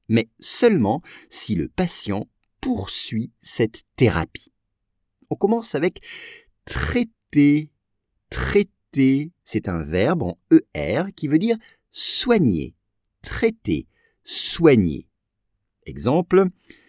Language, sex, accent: English, male, French